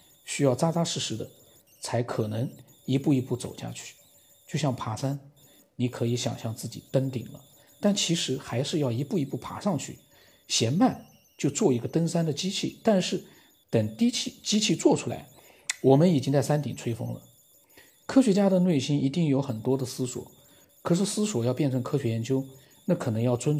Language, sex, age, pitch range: Chinese, male, 50-69, 120-150 Hz